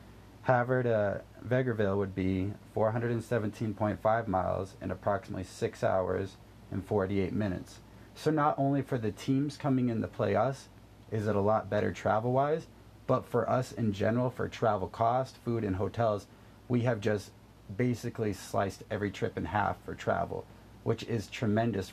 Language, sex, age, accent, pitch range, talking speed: English, male, 30-49, American, 100-115 Hz, 150 wpm